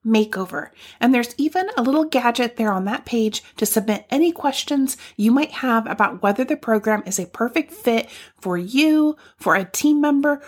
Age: 30-49